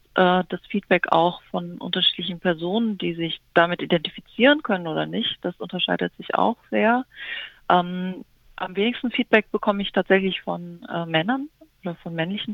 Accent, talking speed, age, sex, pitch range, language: German, 150 wpm, 40-59, female, 165-195 Hz, German